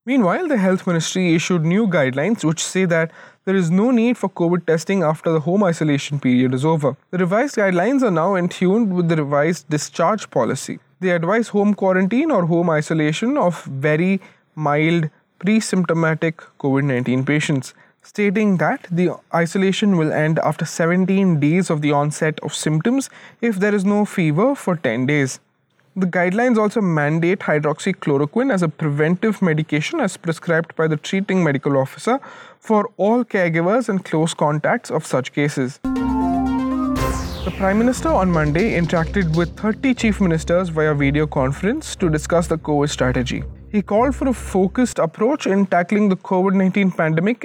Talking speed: 160 wpm